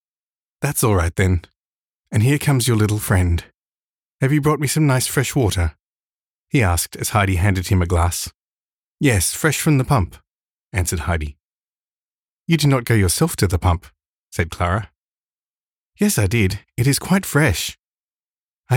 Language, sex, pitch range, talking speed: English, male, 90-145 Hz, 165 wpm